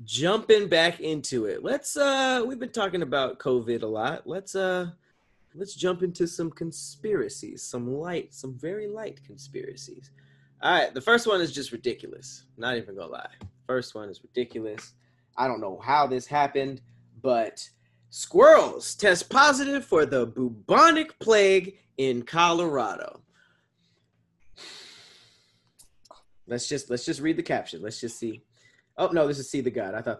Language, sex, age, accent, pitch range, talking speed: English, male, 20-39, American, 125-200 Hz, 155 wpm